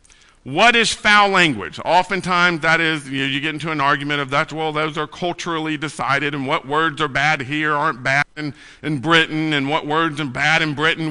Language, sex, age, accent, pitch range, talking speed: English, male, 50-69, American, 140-180 Hz, 210 wpm